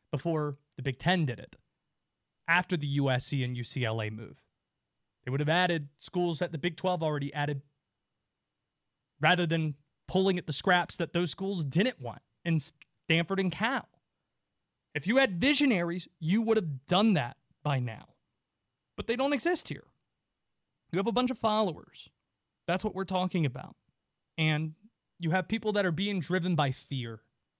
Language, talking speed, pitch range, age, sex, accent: English, 165 wpm, 150-250 Hz, 20-39, male, American